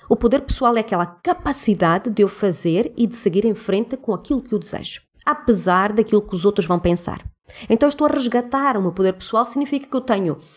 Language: Portuguese